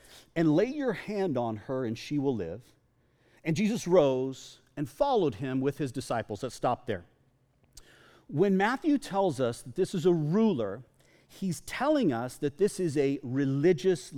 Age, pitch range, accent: 40-59, 130-185 Hz, American